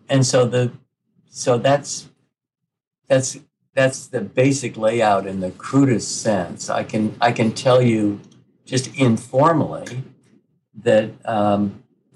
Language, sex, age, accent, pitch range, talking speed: English, male, 50-69, American, 100-130 Hz, 120 wpm